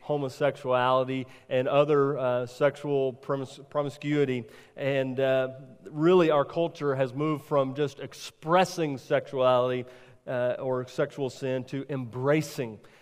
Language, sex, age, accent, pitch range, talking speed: English, male, 40-59, American, 135-160 Hz, 110 wpm